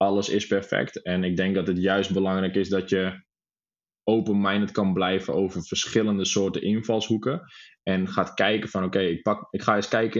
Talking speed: 175 wpm